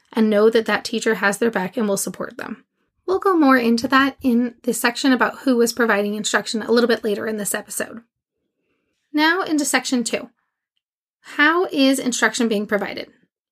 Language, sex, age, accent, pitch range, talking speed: English, female, 20-39, American, 220-265 Hz, 180 wpm